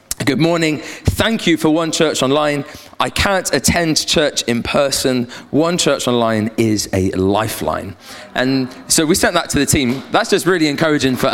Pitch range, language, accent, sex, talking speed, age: 120-165 Hz, English, British, male, 175 wpm, 20-39